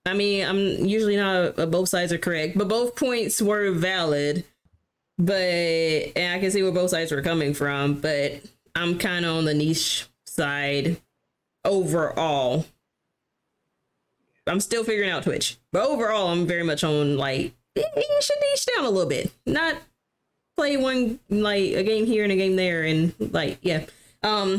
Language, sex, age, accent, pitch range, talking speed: English, female, 20-39, American, 150-200 Hz, 170 wpm